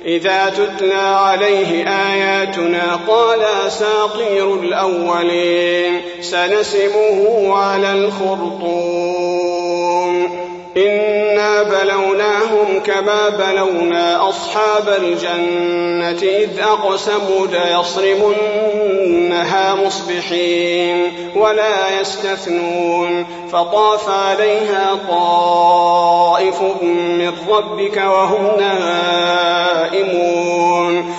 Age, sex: 40-59, male